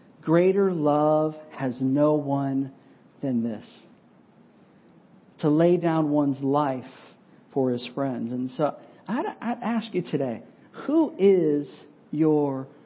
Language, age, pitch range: English, 50-69, 140-175 Hz